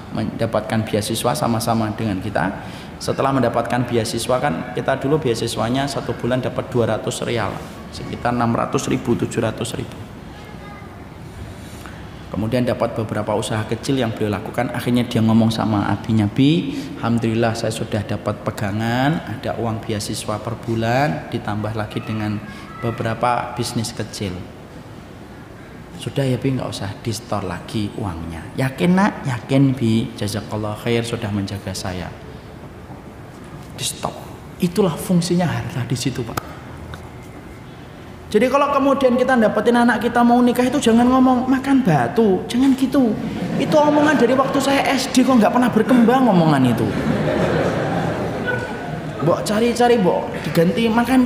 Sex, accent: male, native